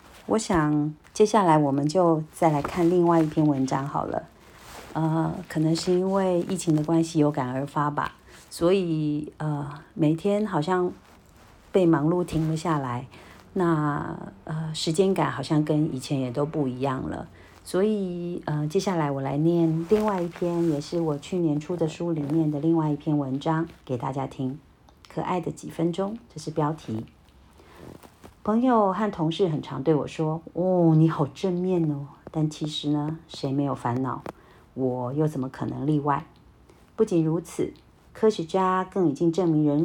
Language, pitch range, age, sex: Chinese, 145-185 Hz, 40-59, female